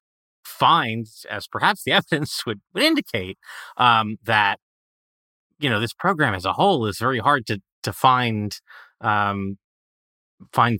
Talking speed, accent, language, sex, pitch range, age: 140 wpm, American, English, male, 105-135 Hz, 30-49